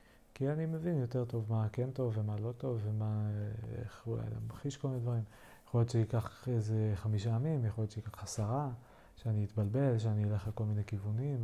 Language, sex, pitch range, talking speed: Hebrew, male, 105-120 Hz, 190 wpm